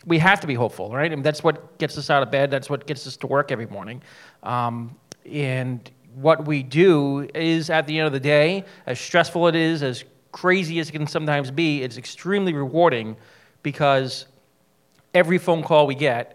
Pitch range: 135-165 Hz